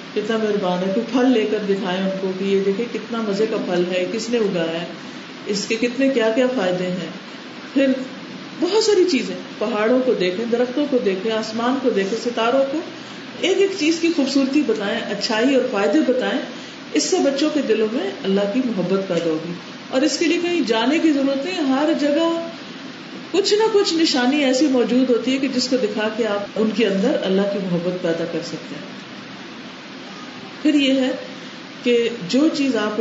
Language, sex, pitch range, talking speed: Urdu, female, 210-275 Hz, 175 wpm